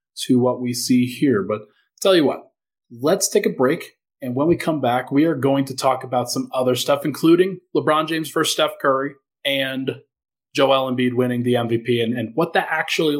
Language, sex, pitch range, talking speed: English, male, 130-185 Hz, 200 wpm